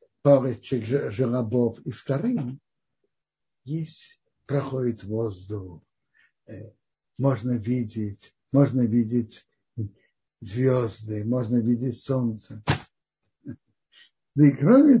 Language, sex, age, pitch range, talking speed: Russian, male, 60-79, 125-170 Hz, 70 wpm